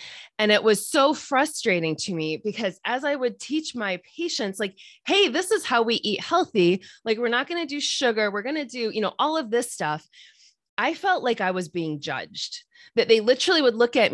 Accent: American